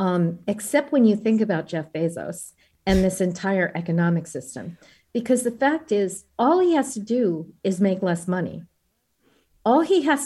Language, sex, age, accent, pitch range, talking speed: English, female, 40-59, American, 180-225 Hz, 170 wpm